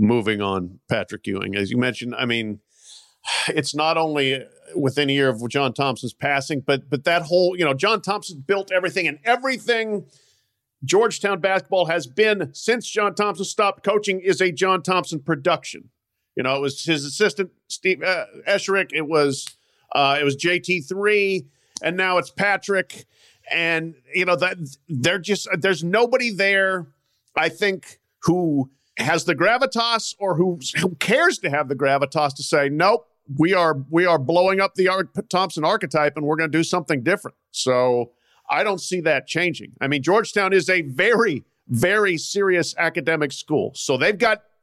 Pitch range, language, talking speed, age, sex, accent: 140-190 Hz, English, 170 wpm, 50-69, male, American